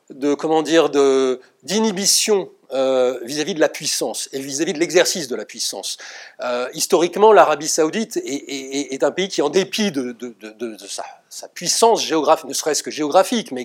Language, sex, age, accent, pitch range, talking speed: French, male, 40-59, French, 135-185 Hz, 190 wpm